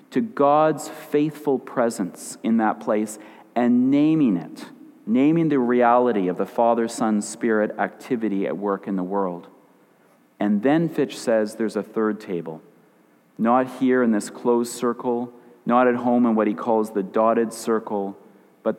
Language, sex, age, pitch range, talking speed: English, male, 40-59, 105-130 Hz, 155 wpm